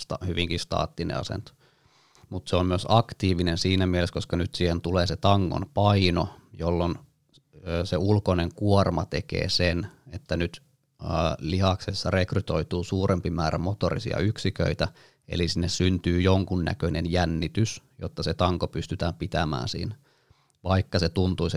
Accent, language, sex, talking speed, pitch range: native, Finnish, male, 125 wpm, 85-100 Hz